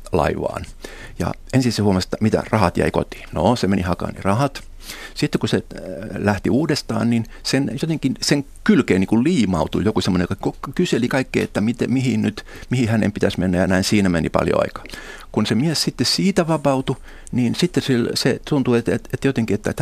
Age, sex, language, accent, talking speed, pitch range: 60-79, male, Finnish, native, 190 wpm, 90-125 Hz